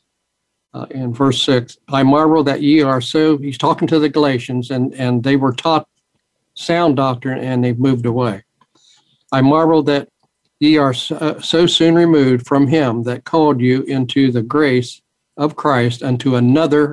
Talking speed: 165 wpm